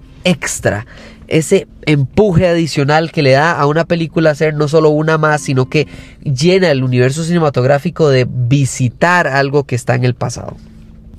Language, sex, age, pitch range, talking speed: Spanish, male, 20-39, 135-175 Hz, 155 wpm